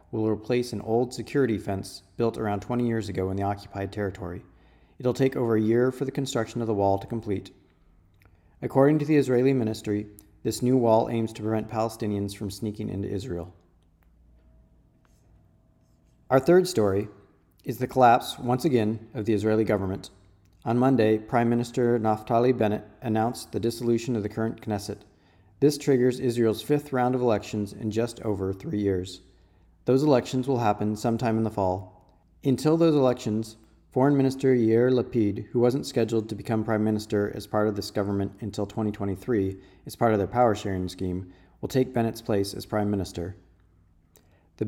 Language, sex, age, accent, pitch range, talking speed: English, male, 40-59, American, 100-120 Hz, 170 wpm